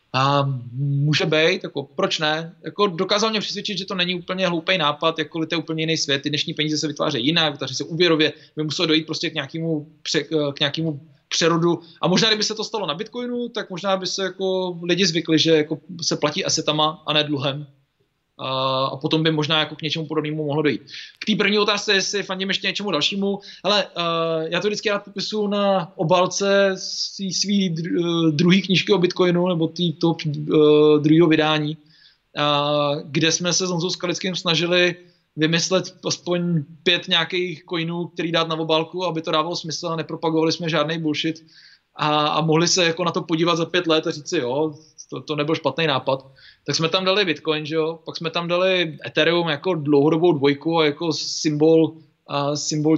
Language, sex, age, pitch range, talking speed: Czech, male, 20-39, 150-175 Hz, 190 wpm